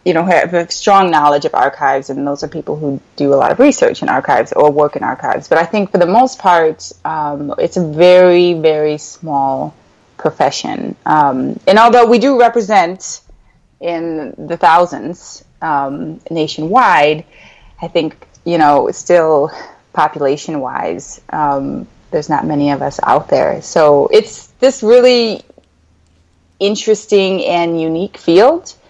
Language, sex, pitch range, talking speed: English, female, 155-215 Hz, 145 wpm